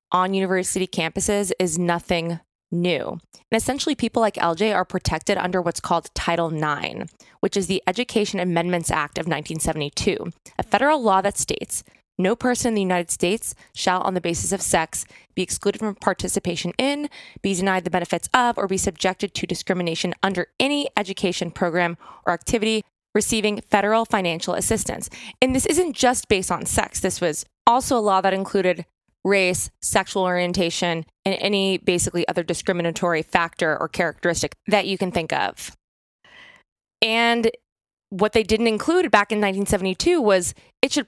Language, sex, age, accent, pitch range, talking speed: English, female, 20-39, American, 175-220 Hz, 160 wpm